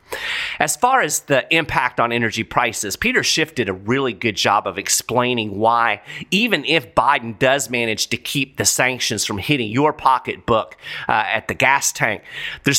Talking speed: 175 wpm